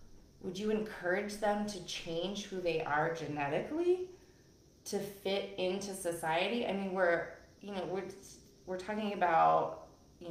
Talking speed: 140 wpm